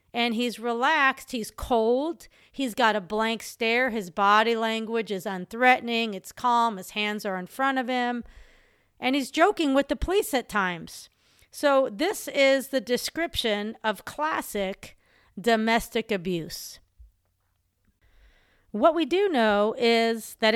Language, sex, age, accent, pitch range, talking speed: English, female, 40-59, American, 215-275 Hz, 135 wpm